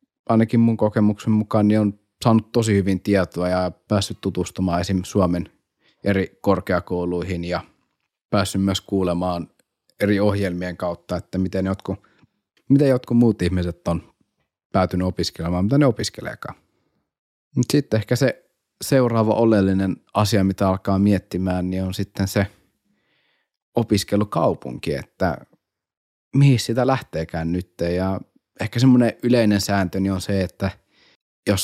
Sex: male